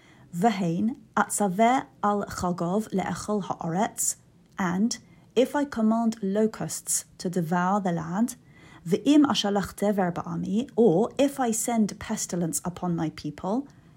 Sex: female